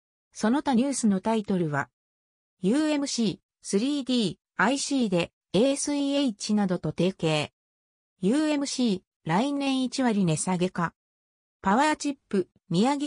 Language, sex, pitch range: Japanese, female, 170-265 Hz